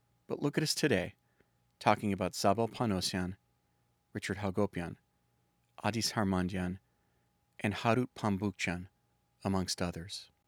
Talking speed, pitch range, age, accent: 105 wpm, 95-120 Hz, 40-59, American